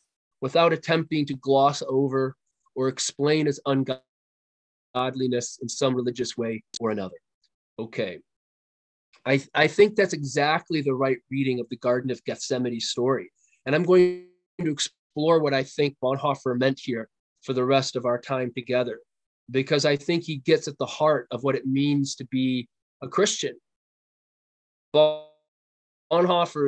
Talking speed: 145 wpm